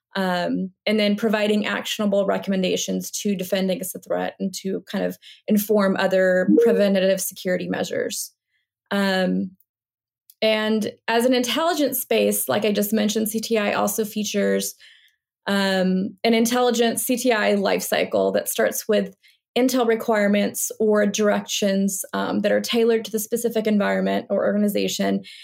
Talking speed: 130 wpm